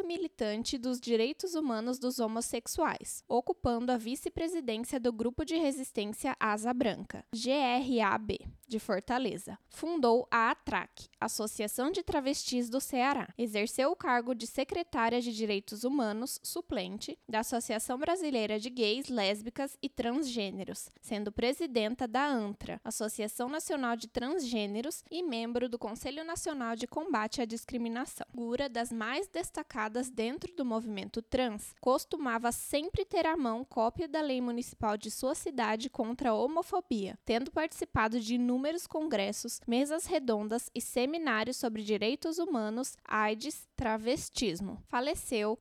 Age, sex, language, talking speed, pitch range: 10-29, female, Portuguese, 130 wpm, 225-285 Hz